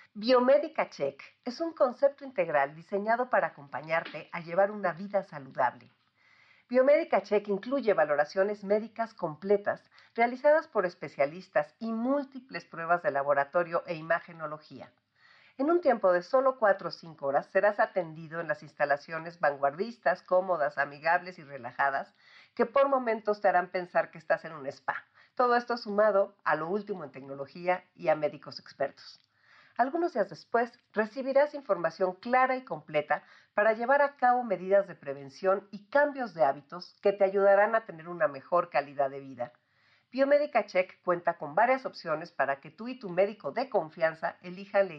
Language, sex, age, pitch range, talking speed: Spanish, female, 50-69, 155-225 Hz, 155 wpm